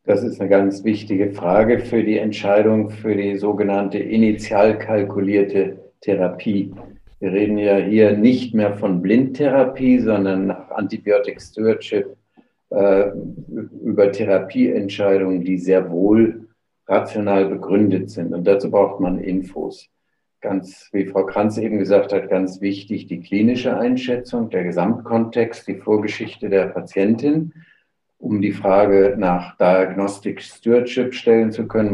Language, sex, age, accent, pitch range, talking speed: German, male, 50-69, German, 95-110 Hz, 130 wpm